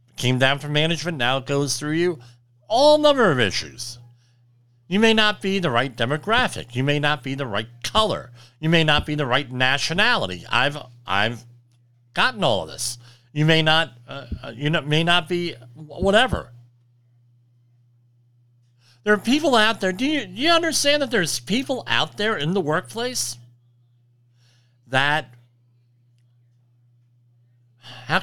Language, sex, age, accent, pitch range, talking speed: English, male, 50-69, American, 120-175 Hz, 150 wpm